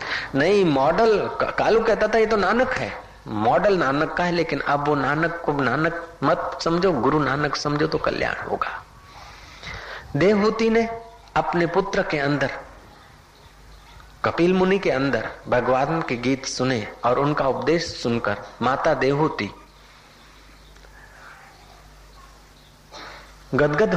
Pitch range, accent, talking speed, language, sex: 135-200 Hz, native, 120 wpm, Hindi, male